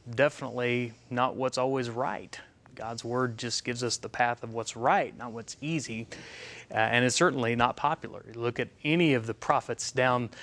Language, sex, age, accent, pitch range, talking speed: English, male, 30-49, American, 115-140 Hz, 180 wpm